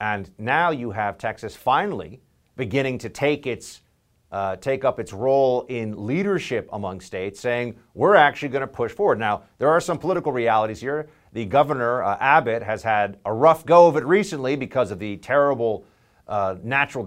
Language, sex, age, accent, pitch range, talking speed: English, male, 50-69, American, 105-155 Hz, 180 wpm